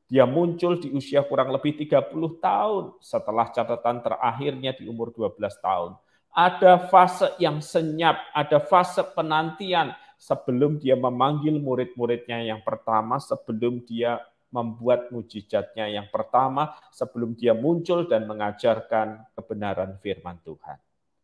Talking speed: 120 wpm